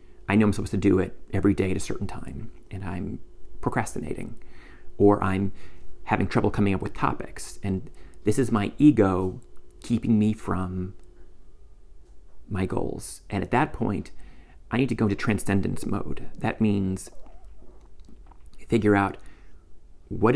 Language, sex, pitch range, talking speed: English, male, 70-110 Hz, 145 wpm